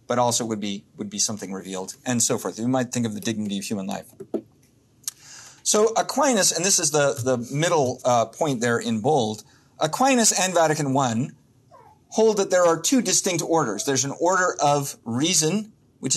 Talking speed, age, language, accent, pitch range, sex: 185 wpm, 30-49, English, American, 120-155 Hz, male